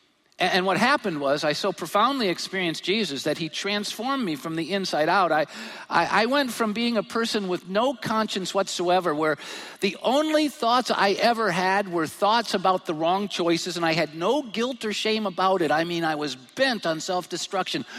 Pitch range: 175-250 Hz